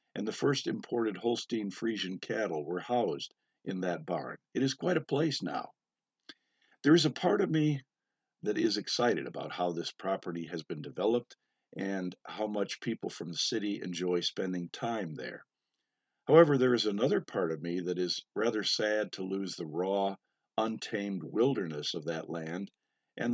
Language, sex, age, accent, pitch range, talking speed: English, male, 50-69, American, 90-120 Hz, 165 wpm